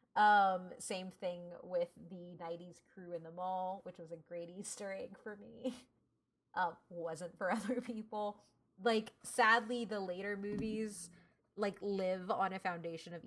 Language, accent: English, American